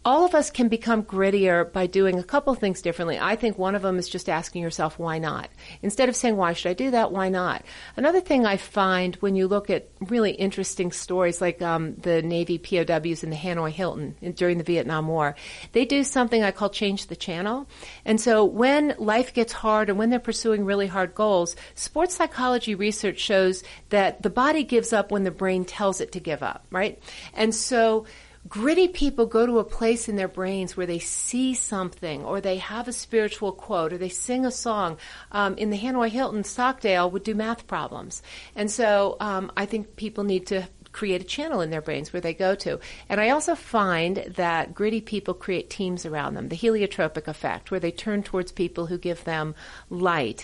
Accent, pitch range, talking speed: American, 180-225 Hz, 210 wpm